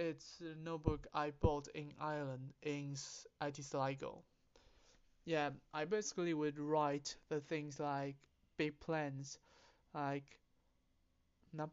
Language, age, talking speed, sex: English, 20-39, 105 wpm, male